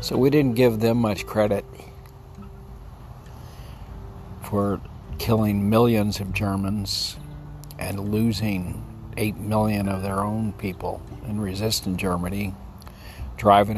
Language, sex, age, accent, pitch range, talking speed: English, male, 50-69, American, 95-110 Hz, 105 wpm